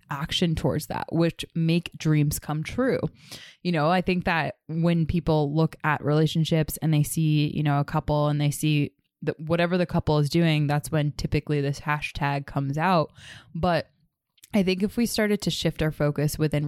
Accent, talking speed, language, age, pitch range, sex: American, 185 wpm, English, 20-39, 150-170 Hz, female